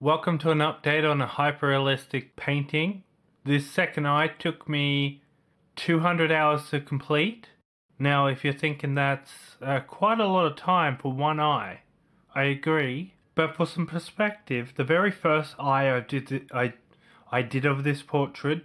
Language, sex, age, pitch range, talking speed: English, male, 20-39, 140-165 Hz, 160 wpm